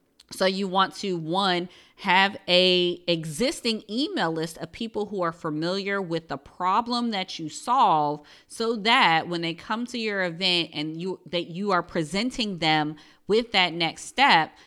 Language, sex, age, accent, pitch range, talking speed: English, female, 30-49, American, 165-200 Hz, 165 wpm